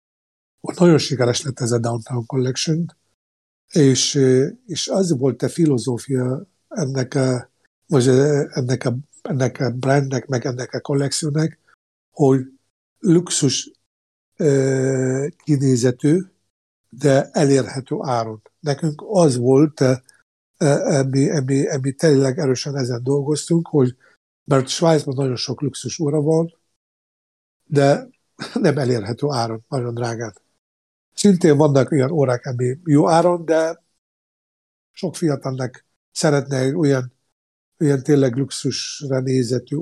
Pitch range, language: 130-150 Hz, Hungarian